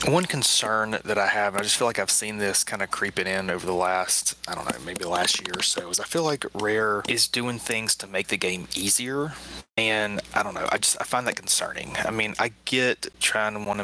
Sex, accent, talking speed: male, American, 255 wpm